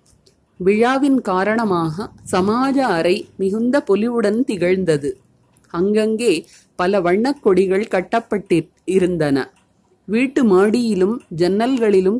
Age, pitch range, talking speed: 30-49, 180-230 Hz, 70 wpm